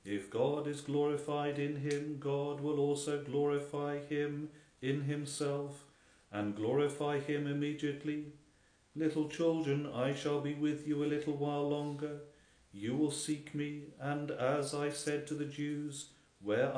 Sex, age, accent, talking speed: male, 40-59, British, 145 wpm